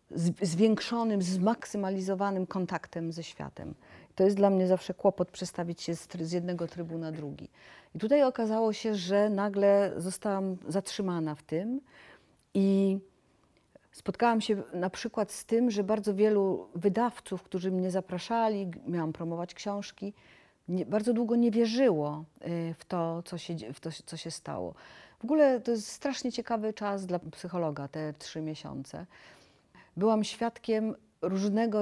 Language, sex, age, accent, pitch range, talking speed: Polish, female, 40-59, native, 170-210 Hz, 130 wpm